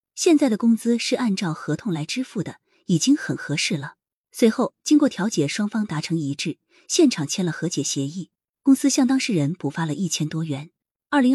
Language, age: Chinese, 20-39